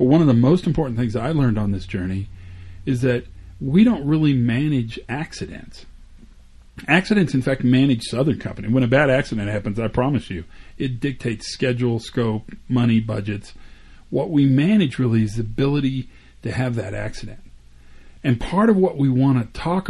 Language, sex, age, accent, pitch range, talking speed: English, male, 40-59, American, 95-140 Hz, 175 wpm